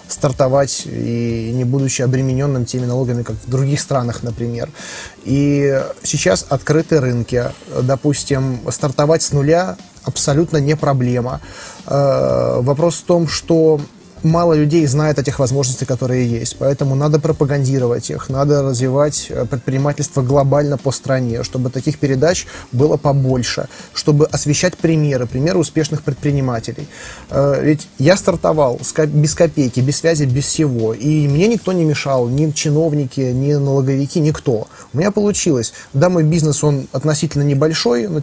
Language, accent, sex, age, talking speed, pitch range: Russian, native, male, 20-39, 135 wpm, 130-155 Hz